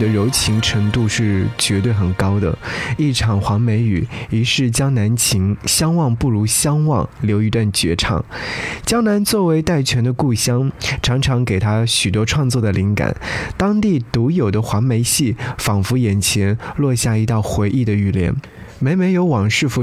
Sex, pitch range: male, 105-135 Hz